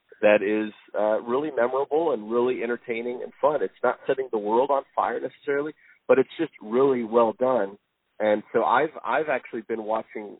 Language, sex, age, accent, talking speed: English, male, 30-49, American, 180 wpm